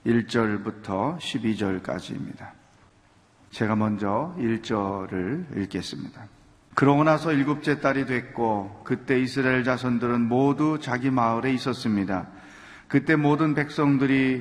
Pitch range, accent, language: 120-140 Hz, native, Korean